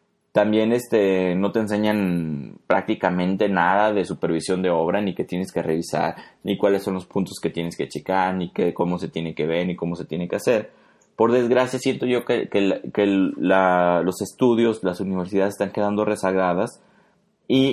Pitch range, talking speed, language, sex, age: 90-125 Hz, 185 wpm, Spanish, male, 30-49